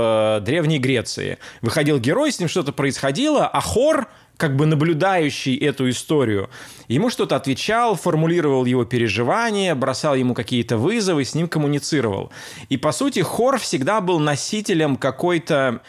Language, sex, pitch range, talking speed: Russian, male, 120-165 Hz, 135 wpm